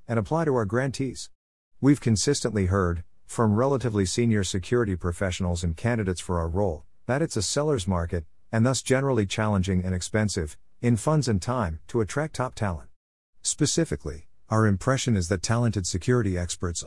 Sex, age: male, 50-69